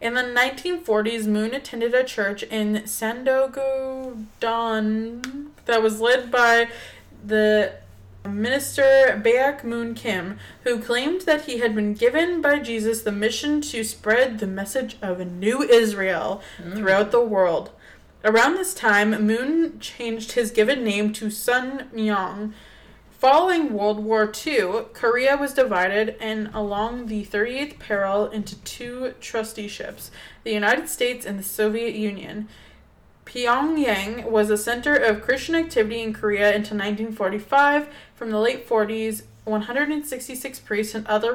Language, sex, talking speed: English, female, 135 wpm